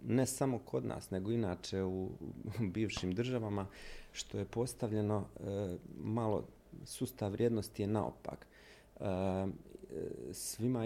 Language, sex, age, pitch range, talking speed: Croatian, male, 40-59, 95-115 Hz, 110 wpm